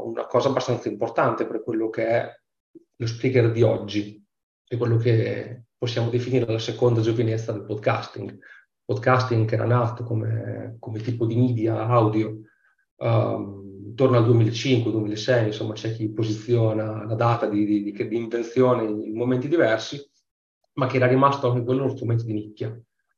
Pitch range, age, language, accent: 110-130 Hz, 30-49, Italian, native